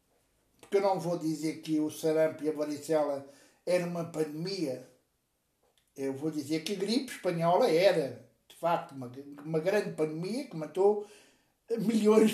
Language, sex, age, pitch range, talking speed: Portuguese, male, 60-79, 160-215 Hz, 150 wpm